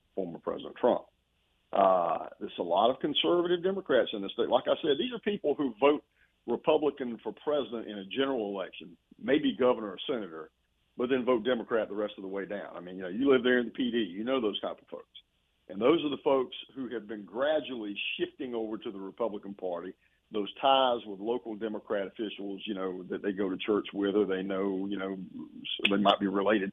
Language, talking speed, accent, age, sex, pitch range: English, 215 wpm, American, 50-69, male, 100-125 Hz